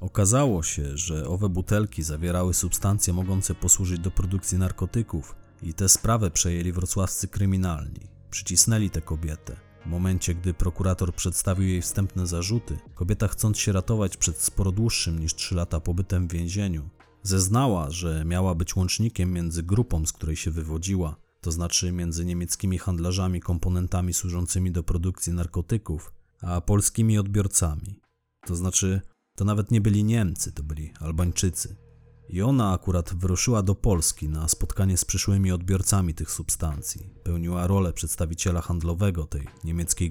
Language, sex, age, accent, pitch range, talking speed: Polish, male, 30-49, native, 85-100 Hz, 140 wpm